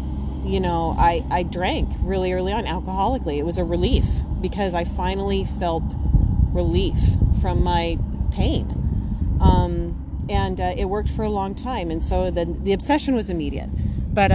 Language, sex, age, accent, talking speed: English, female, 30-49, American, 160 wpm